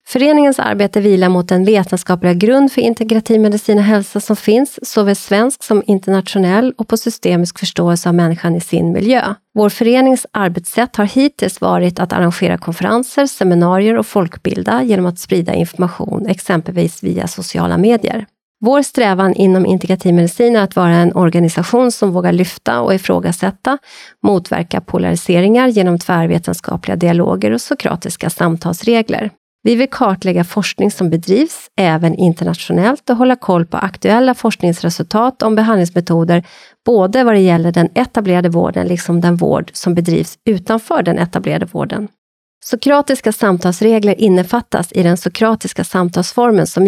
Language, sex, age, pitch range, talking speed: Swedish, female, 30-49, 175-225 Hz, 140 wpm